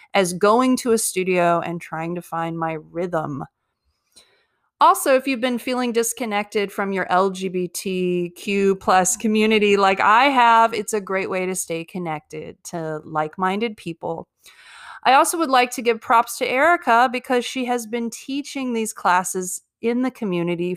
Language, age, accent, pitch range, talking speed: English, 30-49, American, 180-245 Hz, 155 wpm